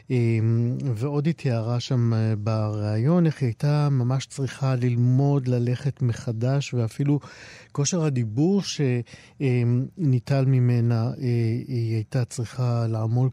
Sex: male